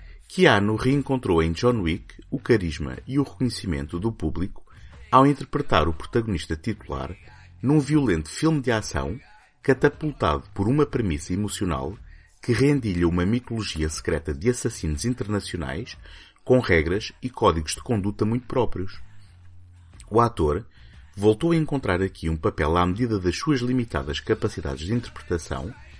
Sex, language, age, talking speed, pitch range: male, Portuguese, 30-49, 135 wpm, 85-115 Hz